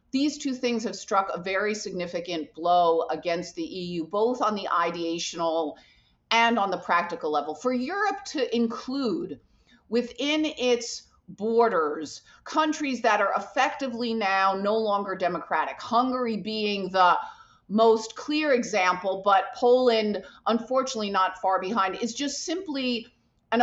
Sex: female